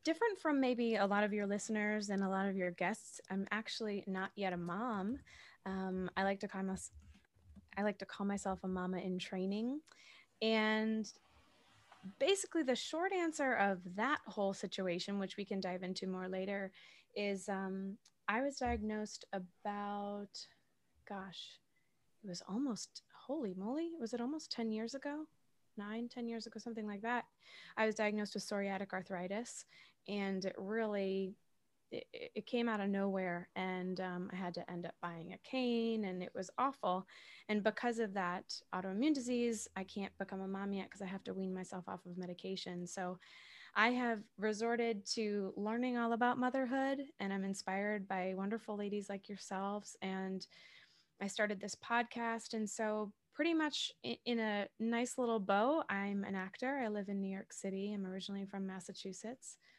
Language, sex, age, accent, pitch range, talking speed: English, female, 20-39, American, 190-230 Hz, 165 wpm